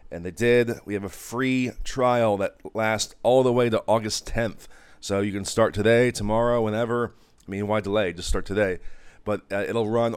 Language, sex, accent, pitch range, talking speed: English, male, American, 100-115 Hz, 200 wpm